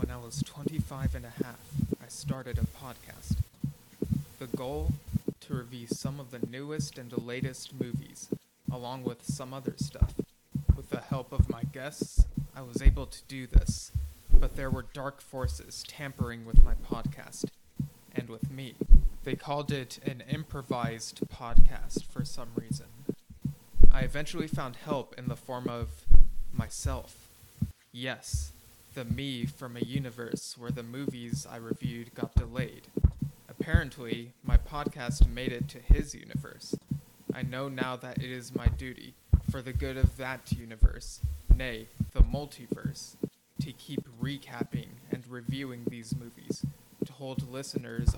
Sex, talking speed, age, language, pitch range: male, 145 wpm, 20-39, English, 115-135 Hz